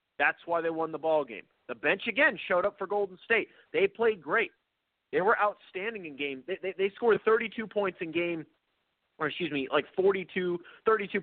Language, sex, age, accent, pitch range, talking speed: English, male, 30-49, American, 155-225 Hz, 205 wpm